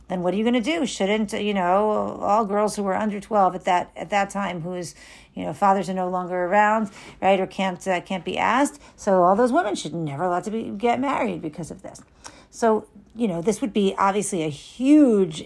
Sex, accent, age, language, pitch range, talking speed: female, American, 50-69, English, 180-230 Hz, 230 wpm